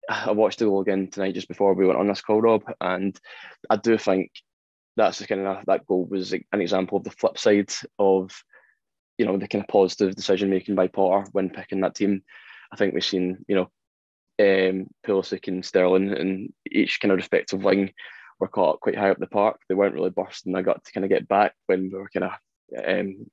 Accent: British